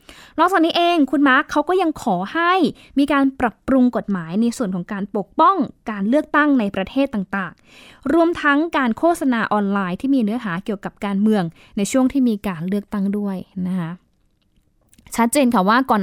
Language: Thai